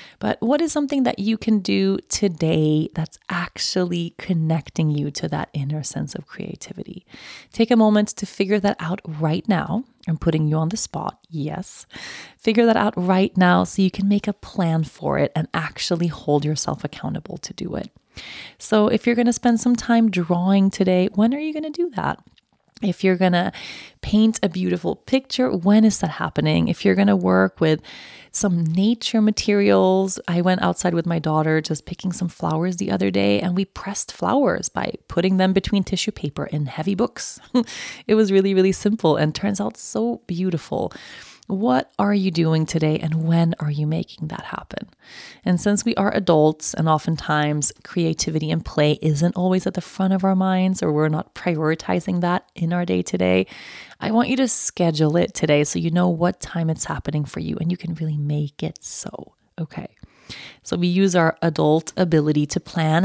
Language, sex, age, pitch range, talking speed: English, female, 30-49, 155-200 Hz, 190 wpm